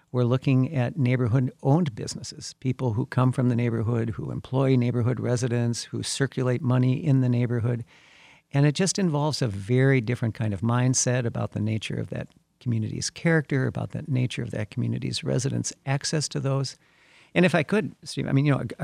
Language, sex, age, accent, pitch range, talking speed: English, male, 60-79, American, 120-140 Hz, 180 wpm